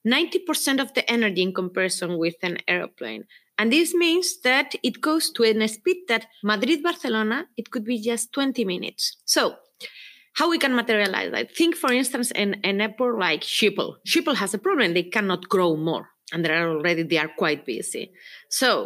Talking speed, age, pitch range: 180 wpm, 30-49, 180-280 Hz